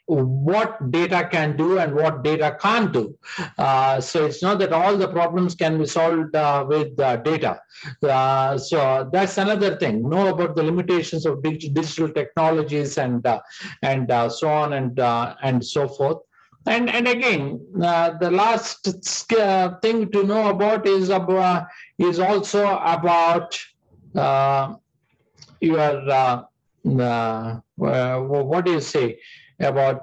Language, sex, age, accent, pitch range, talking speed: English, male, 50-69, Indian, 135-185 Hz, 140 wpm